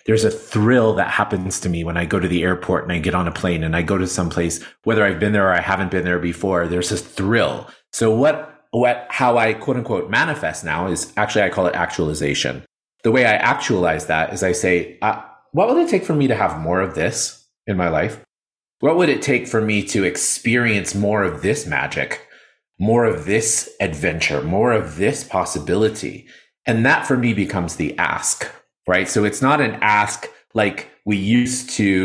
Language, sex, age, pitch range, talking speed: English, male, 30-49, 90-110 Hz, 210 wpm